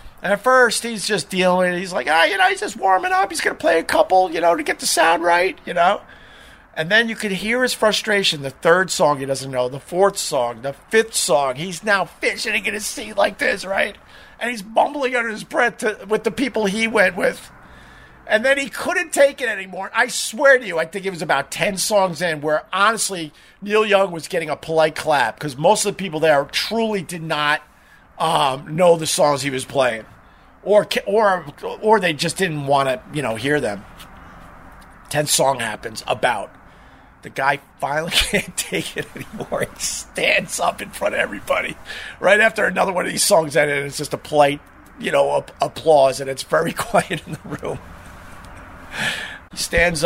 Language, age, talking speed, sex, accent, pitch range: English, 50-69, 205 wpm, male, American, 145-220 Hz